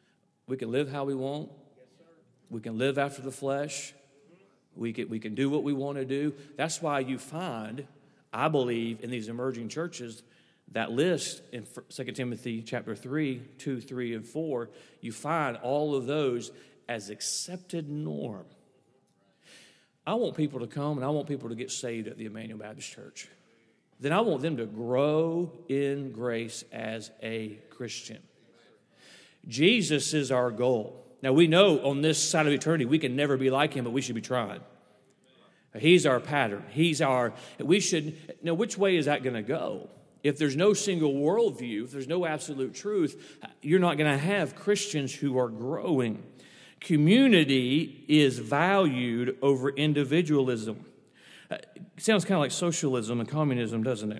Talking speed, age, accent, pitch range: 165 wpm, 40-59, American, 120-155 Hz